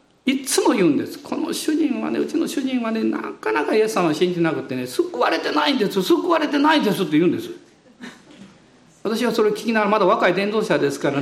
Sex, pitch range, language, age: male, 190-310 Hz, Japanese, 50-69